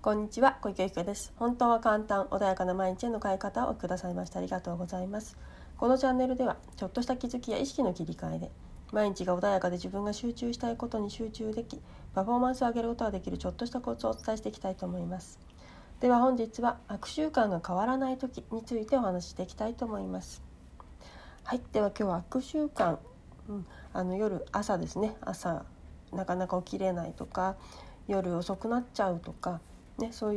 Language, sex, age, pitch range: Japanese, female, 40-59, 180-240 Hz